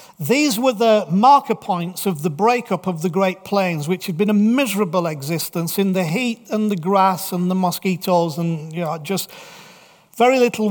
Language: English